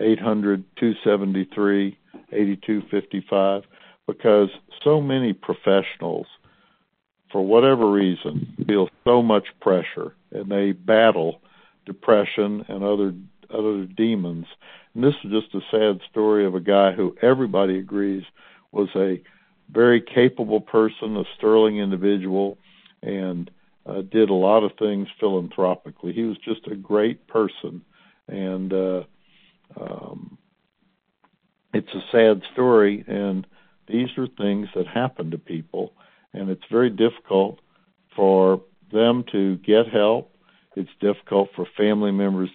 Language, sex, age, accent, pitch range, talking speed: English, male, 60-79, American, 95-115 Hz, 130 wpm